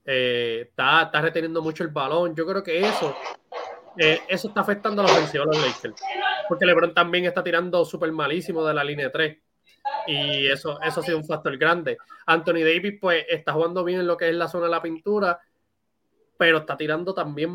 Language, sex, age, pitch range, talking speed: Spanish, male, 20-39, 155-190 Hz, 200 wpm